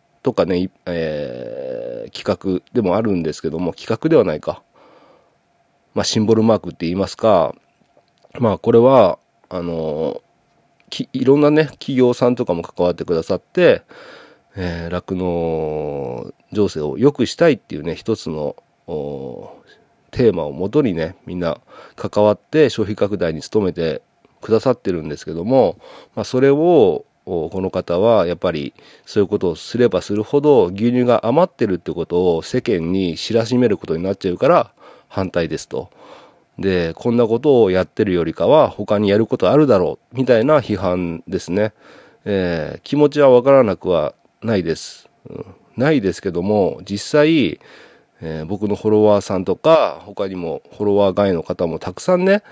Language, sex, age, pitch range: Japanese, male, 40-59, 90-125 Hz